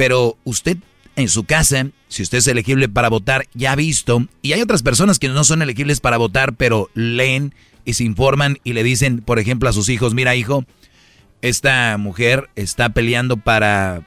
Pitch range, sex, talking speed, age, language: 110-135 Hz, male, 190 wpm, 40-59, Spanish